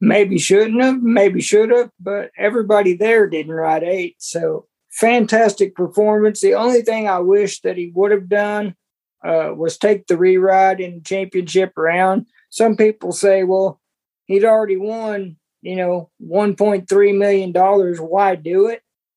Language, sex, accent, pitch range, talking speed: English, male, American, 175-210 Hz, 160 wpm